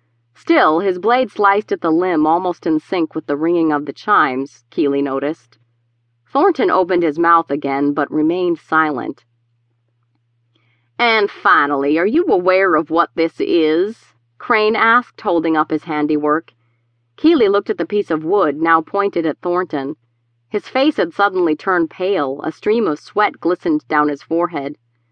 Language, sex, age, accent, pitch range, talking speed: English, female, 40-59, American, 135-195 Hz, 160 wpm